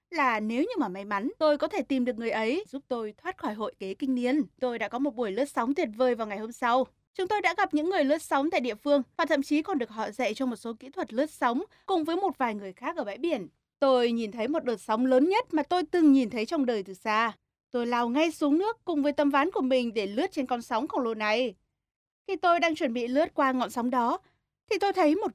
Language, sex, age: Vietnamese, female, 20-39